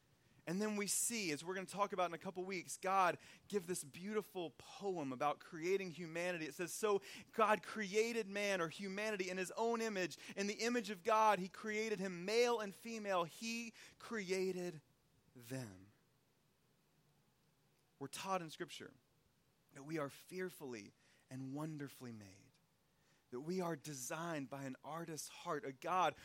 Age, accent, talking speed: 30-49, American, 160 wpm